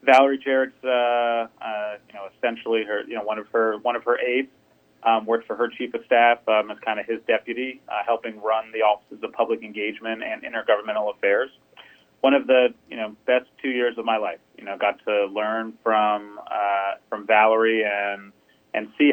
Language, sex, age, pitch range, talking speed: English, male, 30-49, 110-130 Hz, 200 wpm